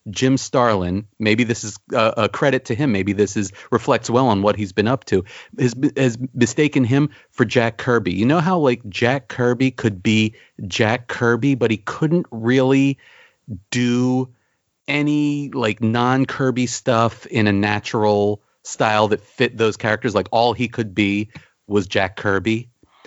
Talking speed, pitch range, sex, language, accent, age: 165 wpm, 105-140 Hz, male, English, American, 40-59